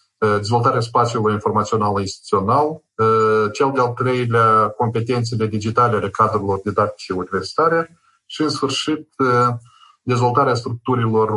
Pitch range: 105-130 Hz